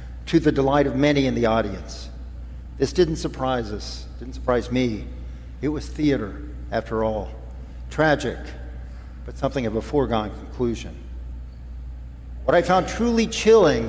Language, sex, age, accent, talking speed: English, male, 50-69, American, 140 wpm